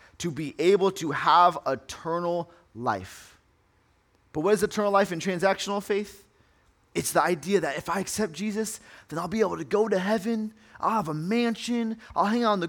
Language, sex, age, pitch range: English, male, 30-49, 115-185 Hz